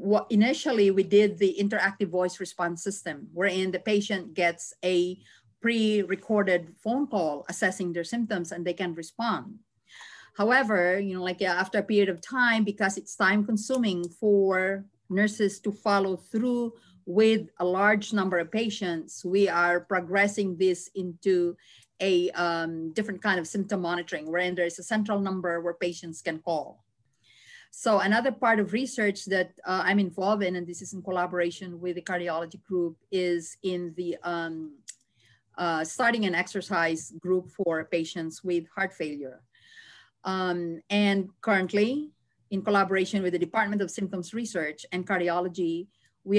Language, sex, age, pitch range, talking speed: English, female, 40-59, 175-205 Hz, 150 wpm